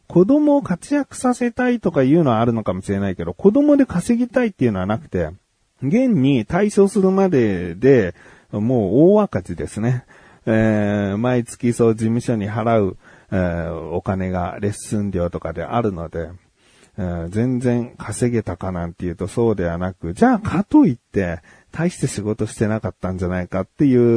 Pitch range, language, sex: 95-140 Hz, Japanese, male